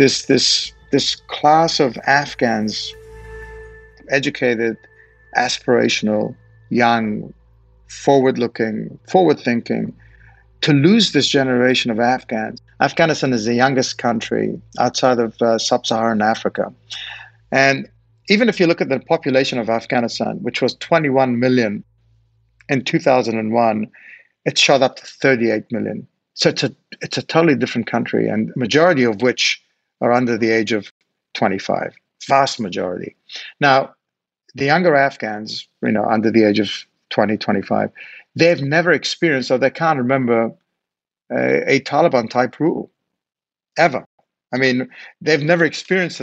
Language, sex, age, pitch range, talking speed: English, male, 50-69, 115-140 Hz, 130 wpm